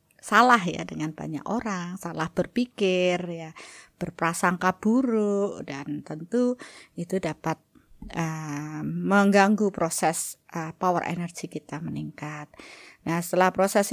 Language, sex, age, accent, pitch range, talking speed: Indonesian, female, 30-49, native, 170-235 Hz, 110 wpm